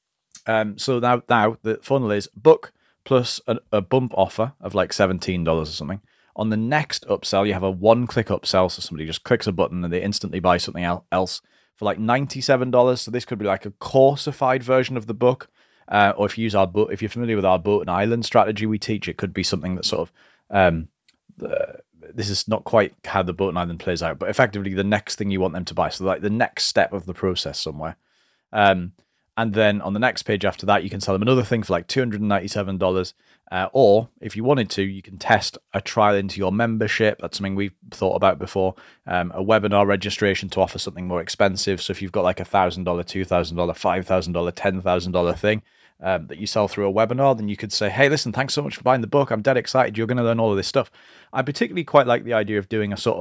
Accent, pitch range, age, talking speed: British, 95-115 Hz, 30-49, 240 wpm